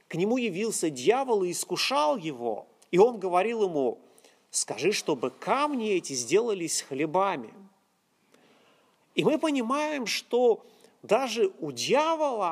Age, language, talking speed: 30-49, Russian, 115 wpm